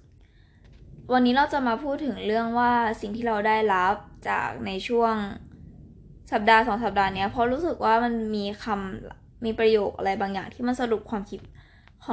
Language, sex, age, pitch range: Thai, female, 10-29, 185-230 Hz